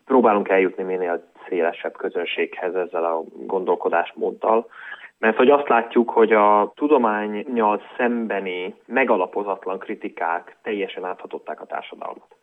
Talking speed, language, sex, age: 105 wpm, Hungarian, male, 30-49